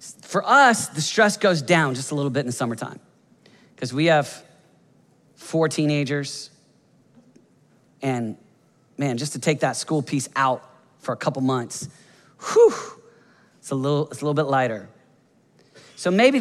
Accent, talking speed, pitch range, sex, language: American, 155 wpm, 130-195 Hz, male, English